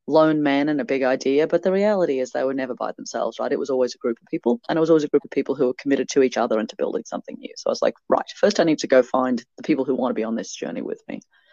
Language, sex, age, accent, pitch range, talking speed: English, female, 30-49, Australian, 125-175 Hz, 335 wpm